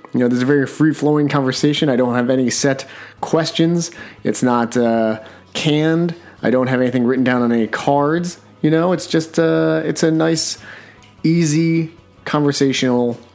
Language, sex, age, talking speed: English, male, 30-49, 160 wpm